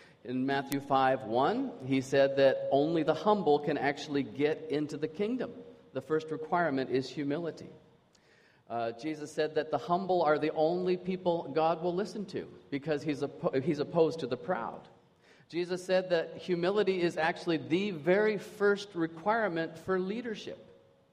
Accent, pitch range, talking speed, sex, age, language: American, 135-180 Hz, 155 wpm, male, 40-59, English